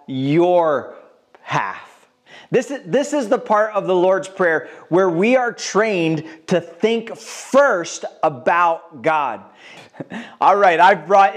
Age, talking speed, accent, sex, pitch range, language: 30-49, 130 wpm, American, male, 180-240 Hz, English